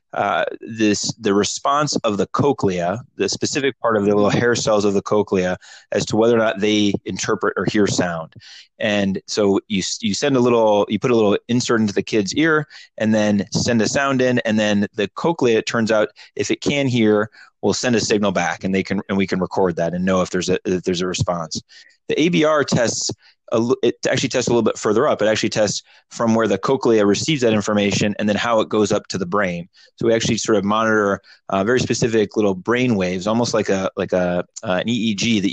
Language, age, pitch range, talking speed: English, 30-49, 100-120 Hz, 225 wpm